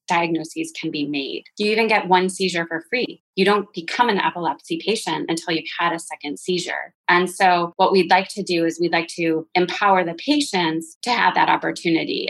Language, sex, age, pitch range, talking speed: English, female, 20-39, 165-195 Hz, 200 wpm